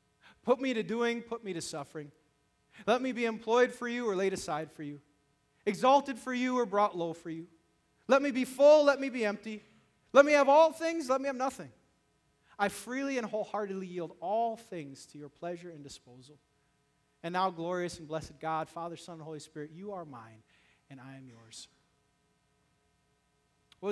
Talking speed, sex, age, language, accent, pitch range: 190 wpm, male, 30-49, English, American, 145-220 Hz